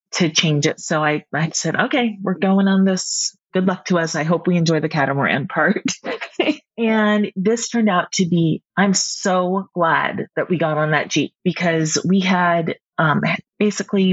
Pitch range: 165-205 Hz